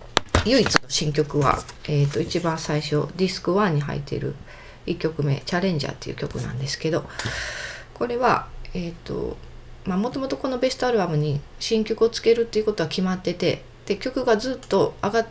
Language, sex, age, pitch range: Japanese, female, 40-59, 155-225 Hz